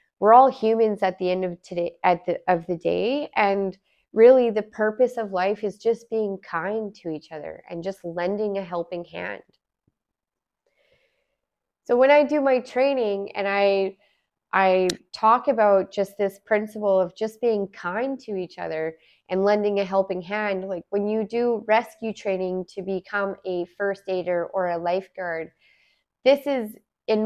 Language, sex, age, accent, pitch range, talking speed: English, female, 20-39, American, 180-215 Hz, 165 wpm